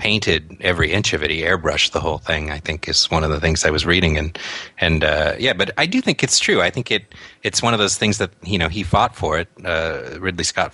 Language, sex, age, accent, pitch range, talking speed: English, male, 30-49, American, 80-95 Hz, 270 wpm